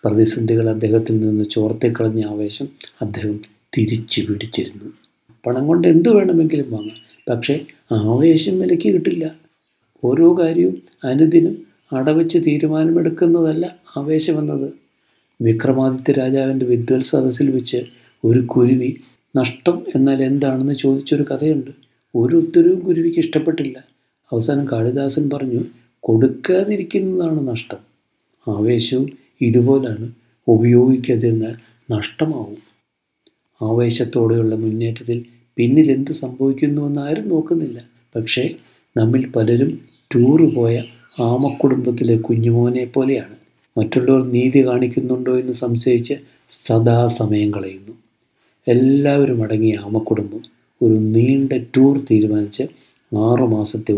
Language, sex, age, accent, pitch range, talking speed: Malayalam, male, 50-69, native, 115-140 Hz, 85 wpm